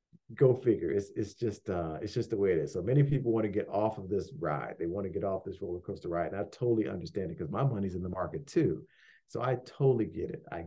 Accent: American